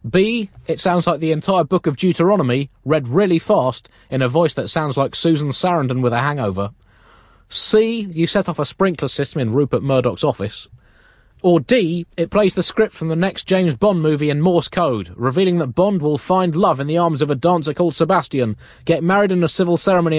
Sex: male